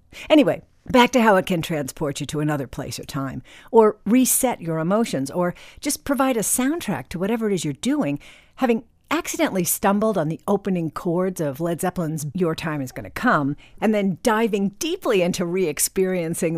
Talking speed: 185 wpm